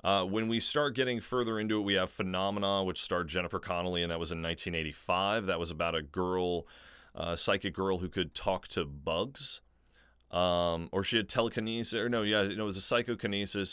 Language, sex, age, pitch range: English, male, 30-49, 85-110 Hz